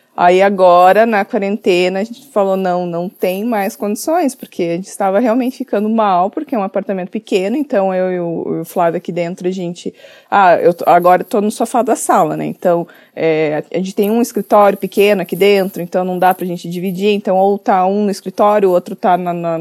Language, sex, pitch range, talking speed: Portuguese, female, 180-235 Hz, 215 wpm